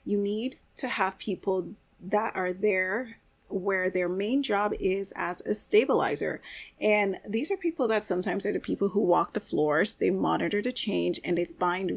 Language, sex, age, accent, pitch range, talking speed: English, female, 30-49, American, 180-210 Hz, 180 wpm